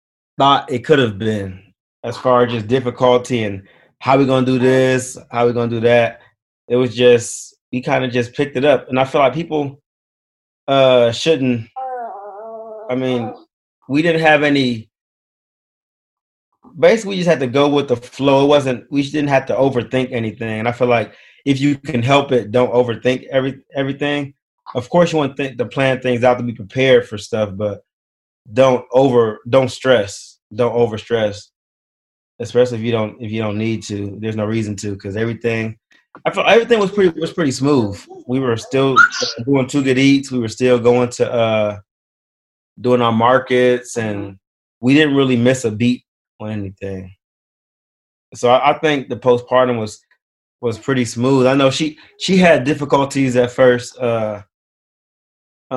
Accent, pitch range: American, 115-135 Hz